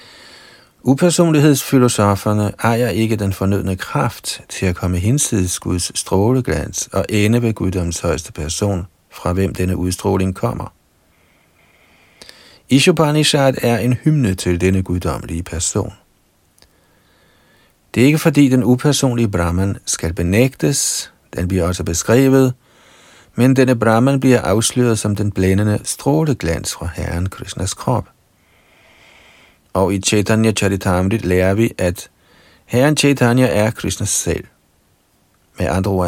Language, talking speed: Danish, 120 wpm